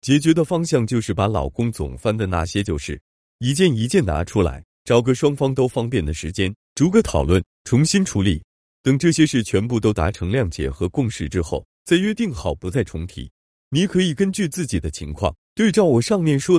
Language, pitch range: Chinese, 85-140 Hz